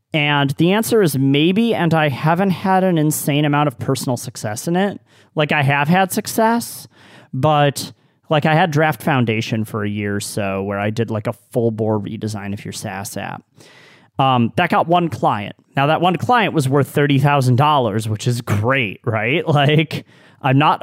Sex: male